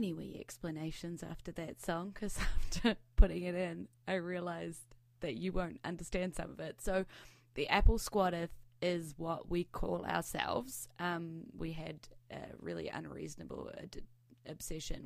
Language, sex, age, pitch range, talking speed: English, female, 20-39, 140-190 Hz, 145 wpm